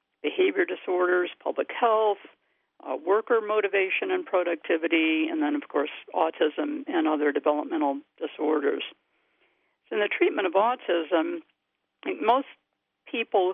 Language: English